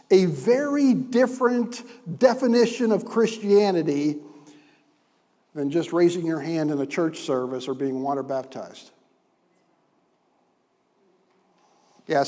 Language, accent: English, American